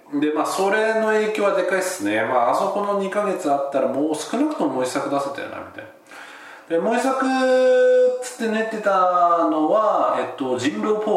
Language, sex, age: Japanese, male, 40-59